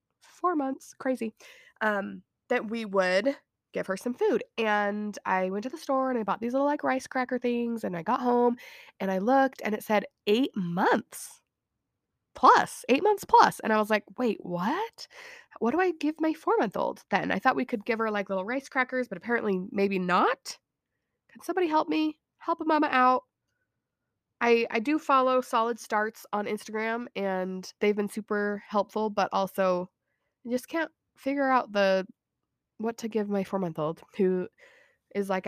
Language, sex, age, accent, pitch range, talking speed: English, female, 20-39, American, 195-275 Hz, 185 wpm